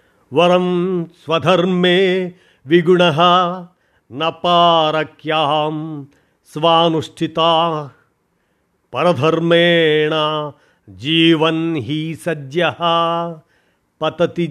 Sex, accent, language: male, native, Telugu